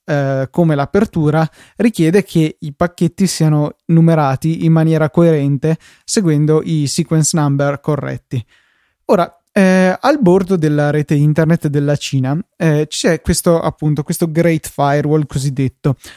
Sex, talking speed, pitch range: male, 125 wpm, 145-175 Hz